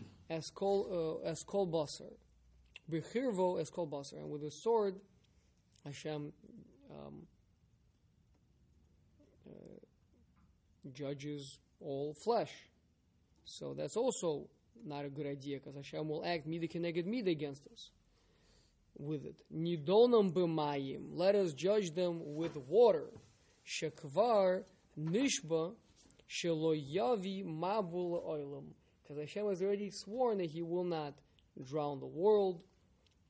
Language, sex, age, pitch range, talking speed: English, male, 20-39, 145-190 Hz, 100 wpm